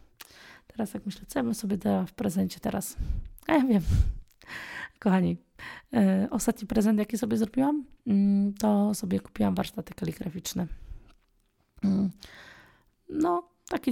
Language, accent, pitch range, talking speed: Polish, native, 175-220 Hz, 130 wpm